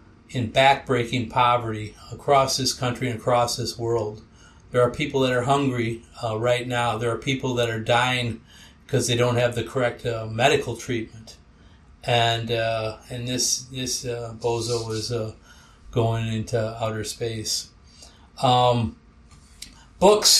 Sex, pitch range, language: male, 110-130 Hz, English